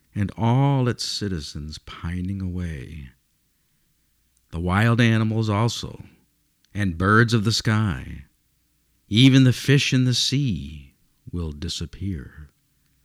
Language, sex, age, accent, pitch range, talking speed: English, male, 50-69, American, 90-130 Hz, 105 wpm